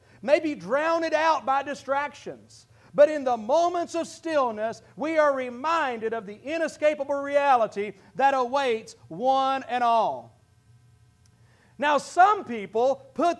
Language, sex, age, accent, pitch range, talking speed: English, male, 40-59, American, 205-320 Hz, 125 wpm